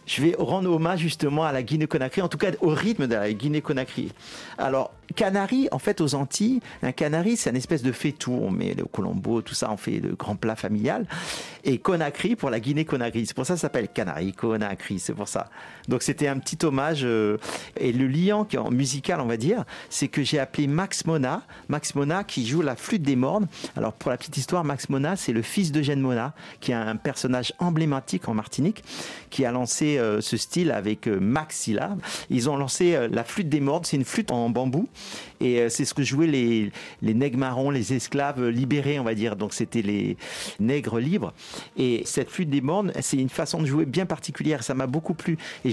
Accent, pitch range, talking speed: French, 125-165 Hz, 205 wpm